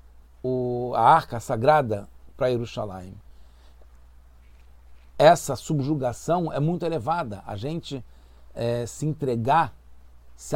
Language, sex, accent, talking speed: English, male, Brazilian, 95 wpm